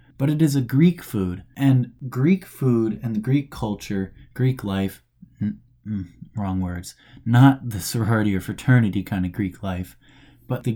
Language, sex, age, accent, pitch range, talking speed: English, male, 20-39, American, 100-130 Hz, 165 wpm